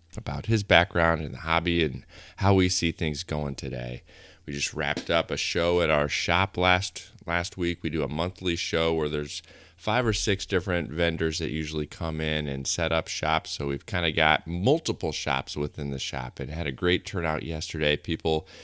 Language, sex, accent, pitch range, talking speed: English, male, American, 75-90 Hz, 200 wpm